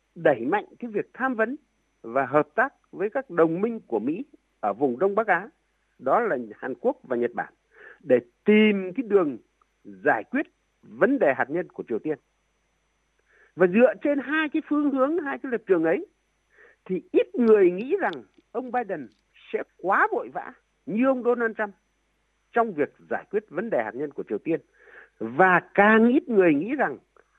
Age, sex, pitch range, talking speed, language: 60-79, male, 200-330 Hz, 185 wpm, Vietnamese